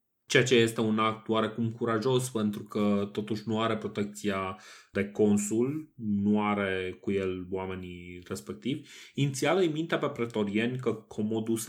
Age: 30-49